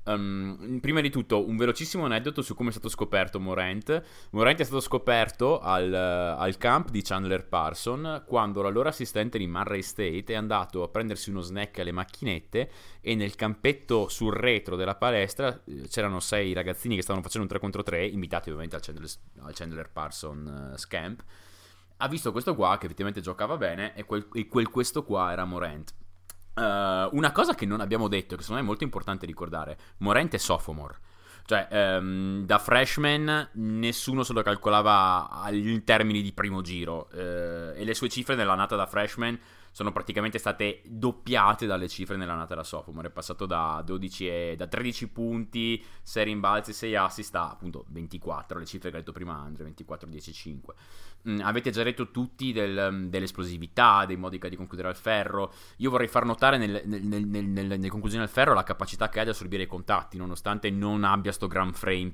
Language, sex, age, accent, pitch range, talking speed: Italian, male, 20-39, native, 90-110 Hz, 185 wpm